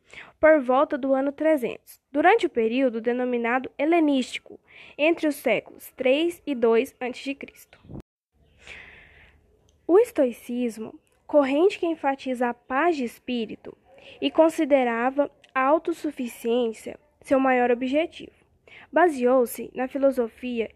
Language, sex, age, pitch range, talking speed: Portuguese, female, 10-29, 245-315 Hz, 105 wpm